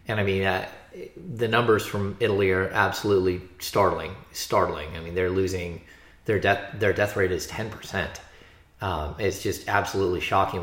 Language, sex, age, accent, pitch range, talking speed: English, male, 20-39, American, 90-110 Hz, 160 wpm